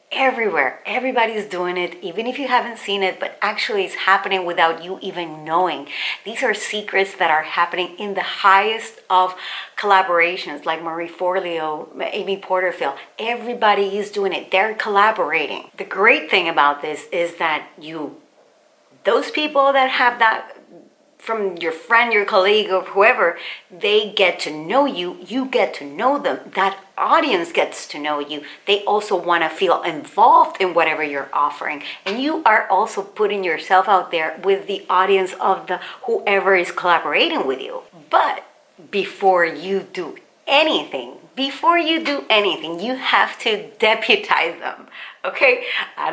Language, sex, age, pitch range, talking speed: English, female, 40-59, 180-260 Hz, 155 wpm